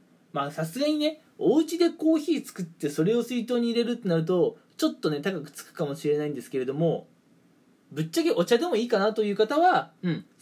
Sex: male